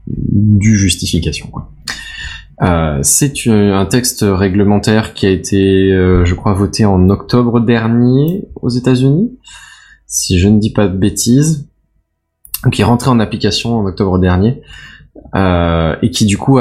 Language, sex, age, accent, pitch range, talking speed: French, male, 20-39, French, 85-115 Hz, 150 wpm